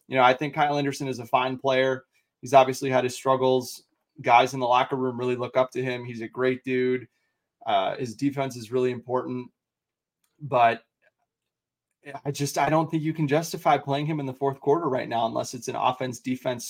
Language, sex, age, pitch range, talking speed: English, male, 20-39, 125-150 Hz, 200 wpm